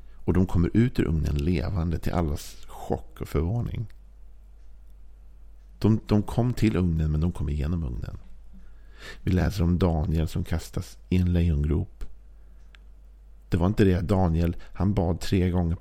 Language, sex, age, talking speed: Swedish, male, 50-69, 155 wpm